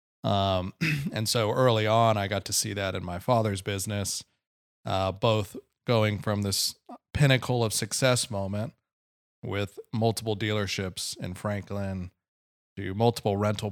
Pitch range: 100-120 Hz